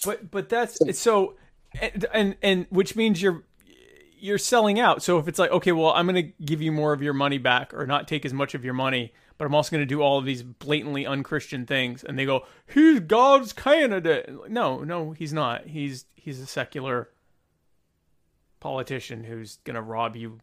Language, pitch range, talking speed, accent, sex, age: English, 140-190 Hz, 205 wpm, American, male, 30-49